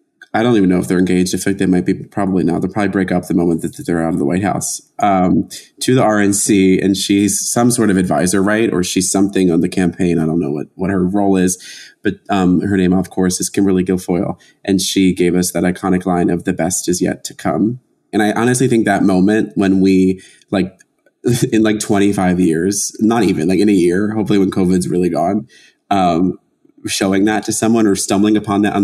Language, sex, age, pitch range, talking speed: English, male, 20-39, 90-100 Hz, 230 wpm